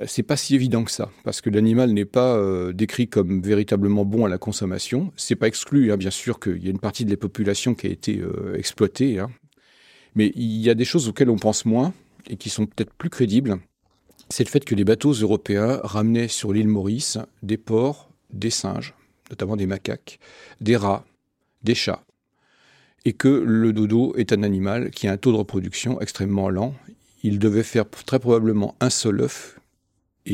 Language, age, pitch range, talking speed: French, 40-59, 100-120 Hz, 200 wpm